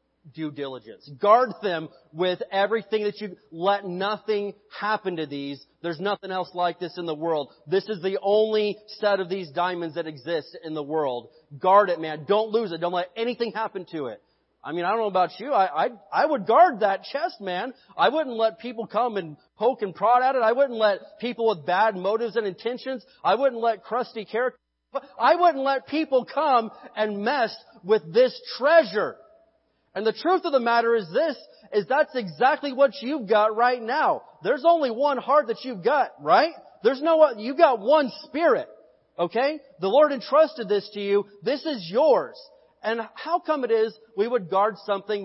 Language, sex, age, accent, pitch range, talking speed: English, male, 30-49, American, 180-250 Hz, 195 wpm